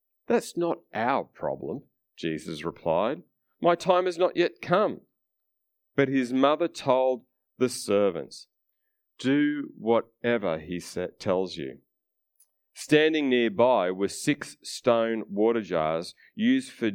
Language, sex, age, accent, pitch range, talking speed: English, male, 40-59, Australian, 100-140 Hz, 115 wpm